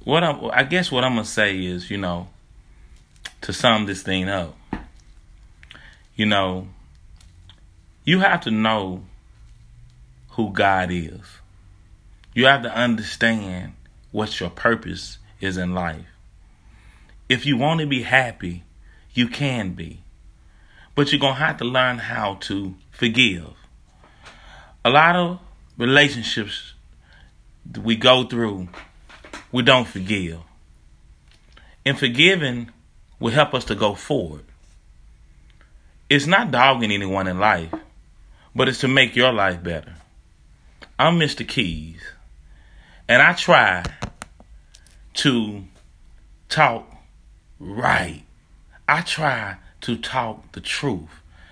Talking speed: 120 wpm